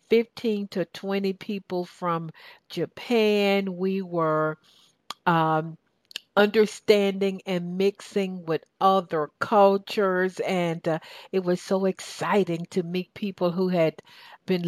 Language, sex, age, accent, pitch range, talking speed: English, female, 60-79, American, 170-200 Hz, 110 wpm